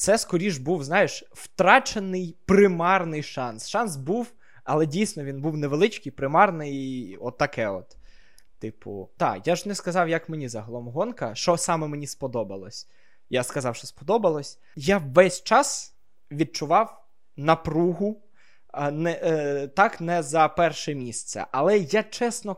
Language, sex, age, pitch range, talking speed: Ukrainian, male, 20-39, 155-200 Hz, 140 wpm